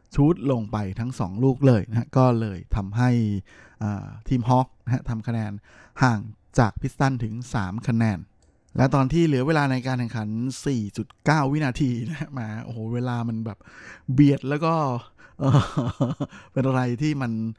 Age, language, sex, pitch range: 20-39, Thai, male, 110-135 Hz